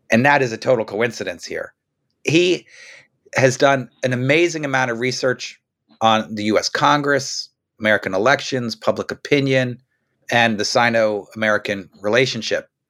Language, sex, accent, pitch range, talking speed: English, male, American, 110-130 Hz, 125 wpm